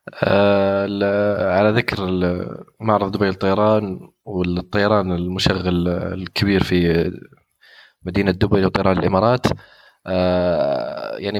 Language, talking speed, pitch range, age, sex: Arabic, 85 wpm, 90-105 Hz, 20-39, male